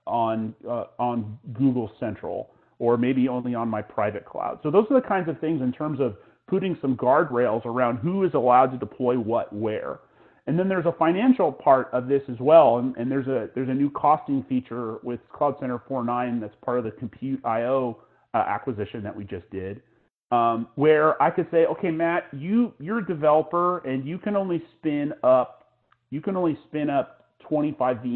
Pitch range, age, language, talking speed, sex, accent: 120-165 Hz, 40-59, English, 195 wpm, male, American